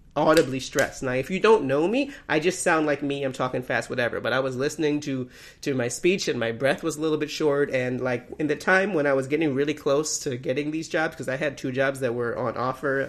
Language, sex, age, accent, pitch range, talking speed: English, male, 30-49, American, 125-155 Hz, 260 wpm